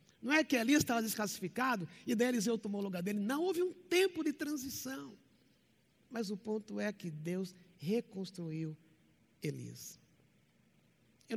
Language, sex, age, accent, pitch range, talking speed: Portuguese, male, 60-79, Brazilian, 165-220 Hz, 150 wpm